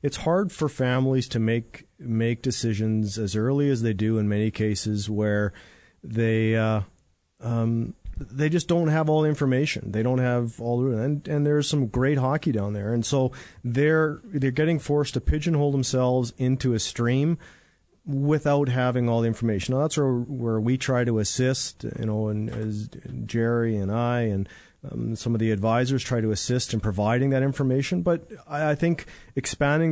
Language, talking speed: English, 180 wpm